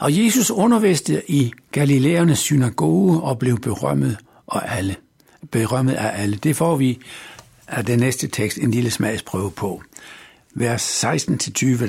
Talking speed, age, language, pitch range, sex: 135 wpm, 60-79, Danish, 110-160 Hz, male